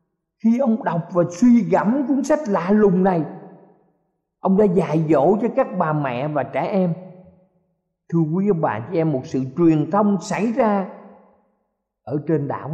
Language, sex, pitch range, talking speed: Vietnamese, male, 145-200 Hz, 175 wpm